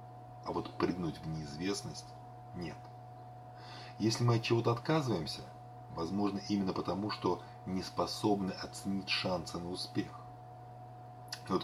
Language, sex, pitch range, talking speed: Russian, male, 100-120 Hz, 115 wpm